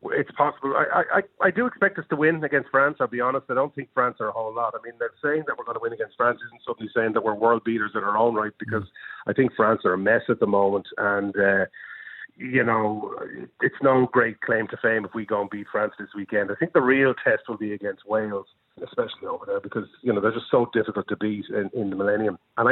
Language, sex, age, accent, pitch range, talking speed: English, male, 40-59, Irish, 105-130 Hz, 260 wpm